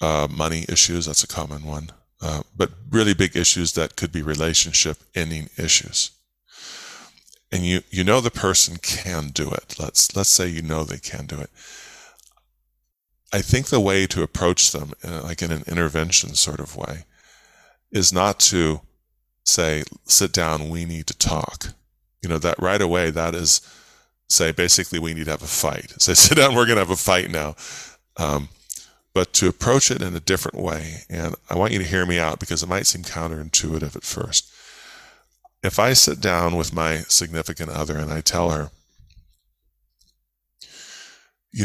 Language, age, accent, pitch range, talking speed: English, 30-49, American, 80-95 Hz, 175 wpm